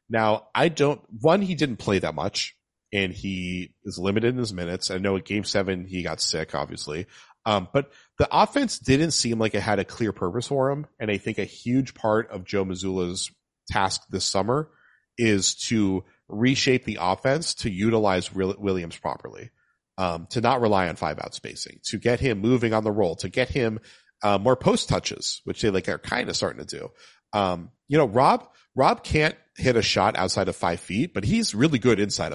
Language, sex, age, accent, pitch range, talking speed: English, male, 40-59, American, 95-125 Hz, 200 wpm